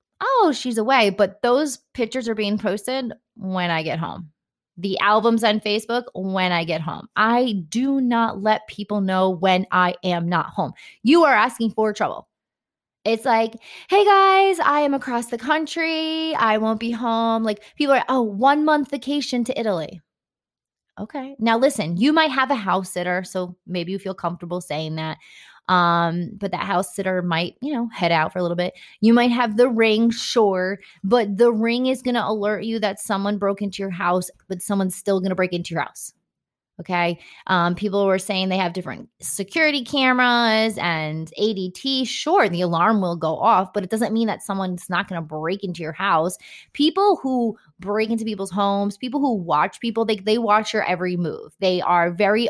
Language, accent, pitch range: English, American, 180-235 Hz